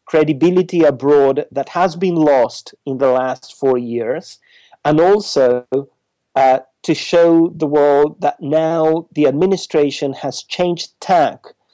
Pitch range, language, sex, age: 135-160 Hz, English, male, 40-59